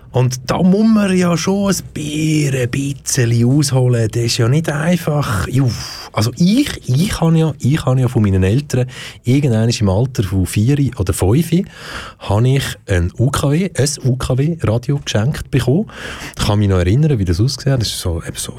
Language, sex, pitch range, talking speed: German, male, 105-140 Hz, 170 wpm